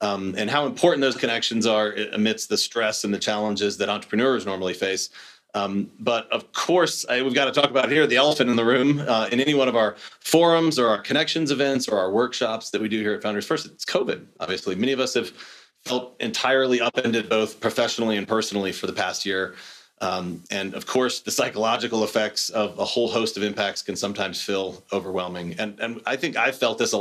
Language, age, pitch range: English, 30-49, 105-135 Hz